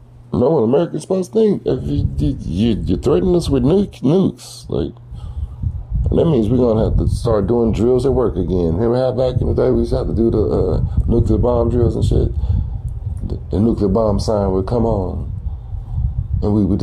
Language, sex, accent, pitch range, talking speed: English, male, American, 95-120 Hz, 205 wpm